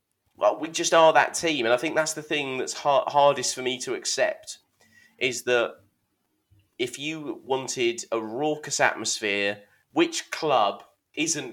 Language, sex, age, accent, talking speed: English, male, 30-49, British, 150 wpm